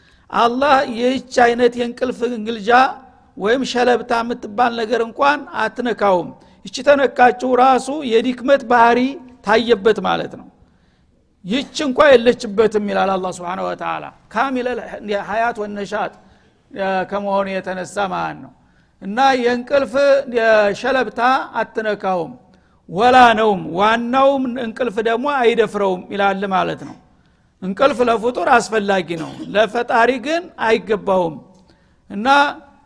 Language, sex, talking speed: Amharic, male, 100 wpm